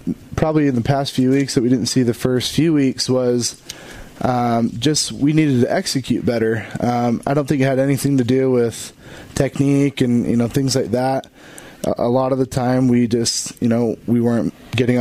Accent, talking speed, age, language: American, 205 wpm, 20-39, English